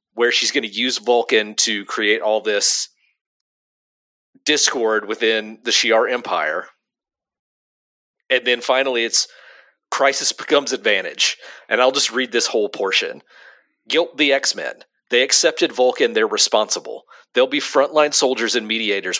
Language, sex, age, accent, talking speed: English, male, 40-59, American, 140 wpm